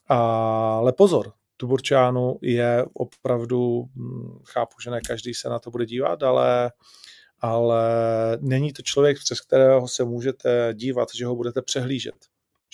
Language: Czech